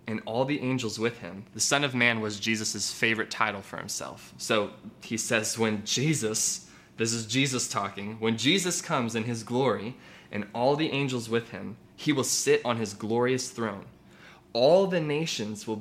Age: 20-39